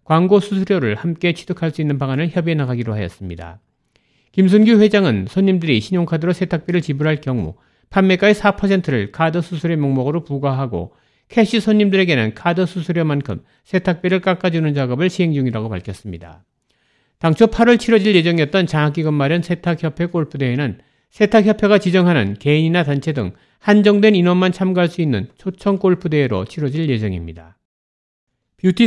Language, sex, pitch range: Korean, male, 135-185 Hz